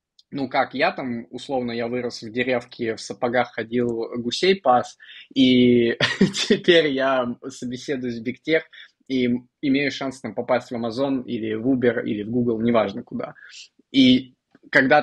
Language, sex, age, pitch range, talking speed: Russian, male, 20-39, 120-145 Hz, 150 wpm